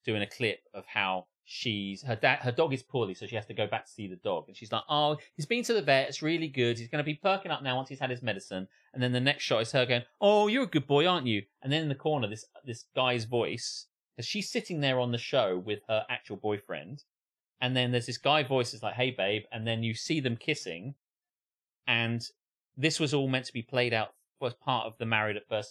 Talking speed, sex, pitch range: 265 wpm, male, 115-165 Hz